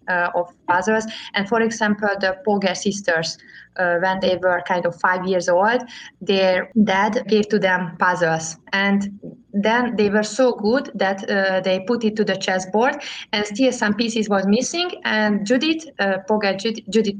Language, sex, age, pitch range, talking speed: English, female, 20-39, 185-220 Hz, 175 wpm